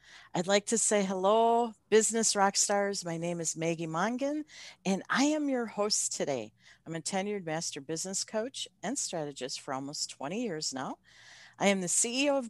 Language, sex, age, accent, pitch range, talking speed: English, female, 50-69, American, 150-225 Hz, 180 wpm